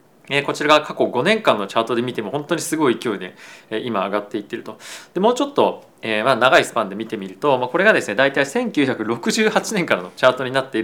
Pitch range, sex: 130-200 Hz, male